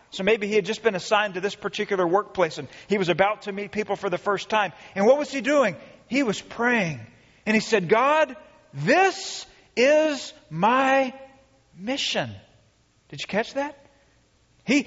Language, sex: English, male